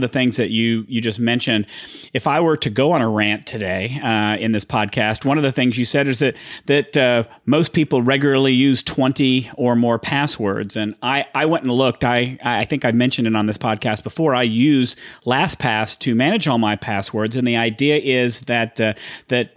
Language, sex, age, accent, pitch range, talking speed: English, male, 40-59, American, 115-140 Hz, 210 wpm